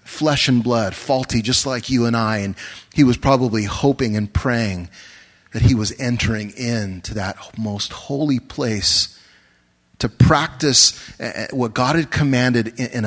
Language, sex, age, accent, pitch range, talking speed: English, male, 30-49, American, 105-130 Hz, 145 wpm